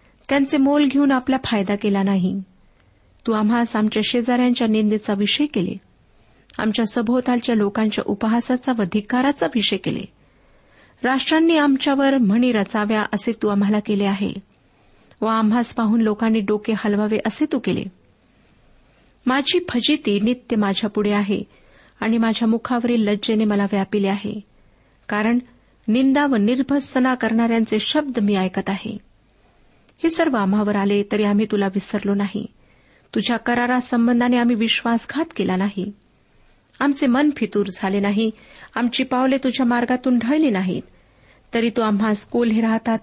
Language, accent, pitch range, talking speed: Marathi, native, 205-250 Hz, 125 wpm